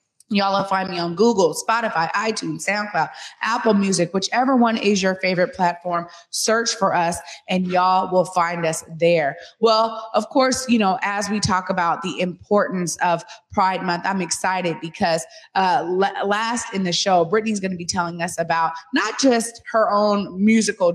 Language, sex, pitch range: English, female, 180-215 Hz